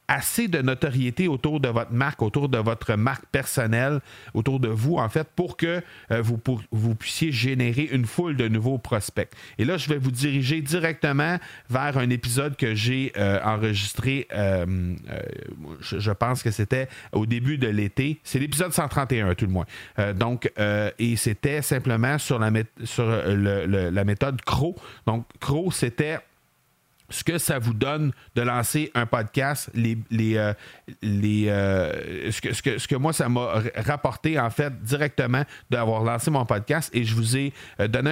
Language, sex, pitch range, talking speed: French, male, 110-140 Hz, 170 wpm